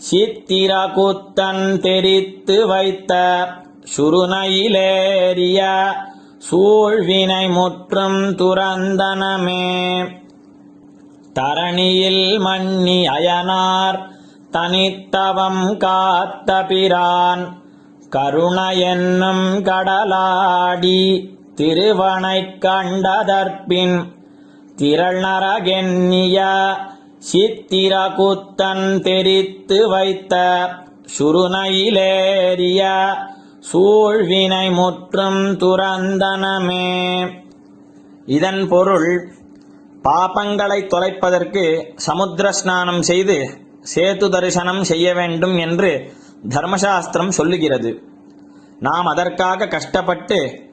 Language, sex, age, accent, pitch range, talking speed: Tamil, male, 30-49, native, 175-190 Hz, 45 wpm